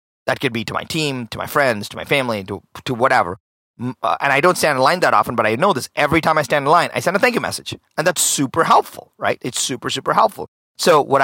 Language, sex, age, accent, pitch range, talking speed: English, male, 30-49, American, 110-150 Hz, 270 wpm